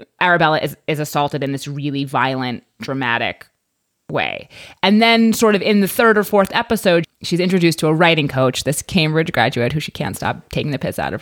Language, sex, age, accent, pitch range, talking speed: English, female, 30-49, American, 140-195 Hz, 205 wpm